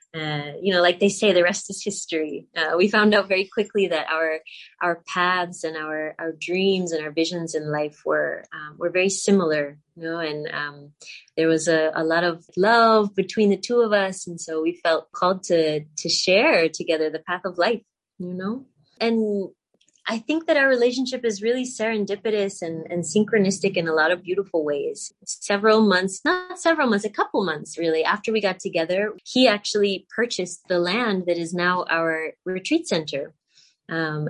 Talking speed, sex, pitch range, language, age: 190 wpm, female, 165-210 Hz, English, 20-39